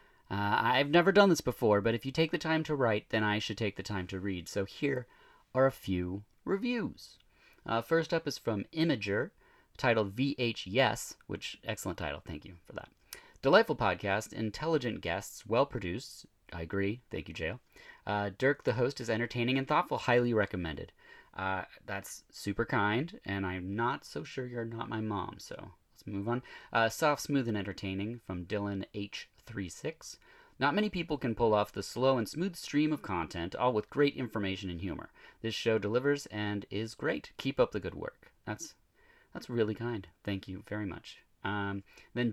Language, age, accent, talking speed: English, 30-49, American, 185 wpm